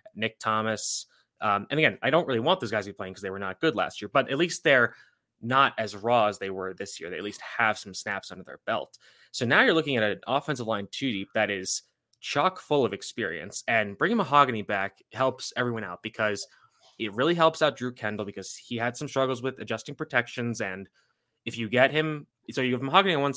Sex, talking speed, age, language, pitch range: male, 235 wpm, 20-39, English, 105-130 Hz